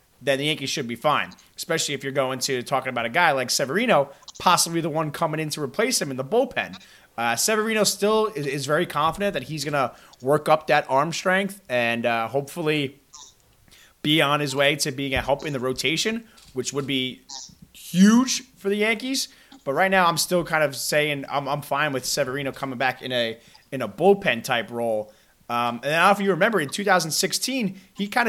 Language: English